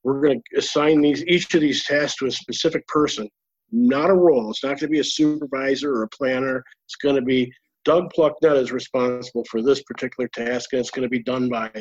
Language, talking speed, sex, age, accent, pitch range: English, 235 wpm, male, 50-69, American, 135-175 Hz